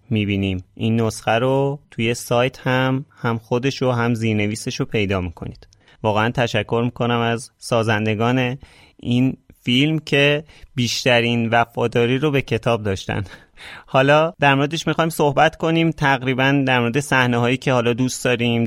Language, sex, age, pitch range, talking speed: Persian, male, 30-49, 110-140 Hz, 140 wpm